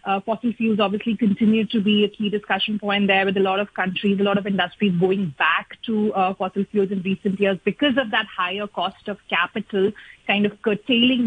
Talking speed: 215 wpm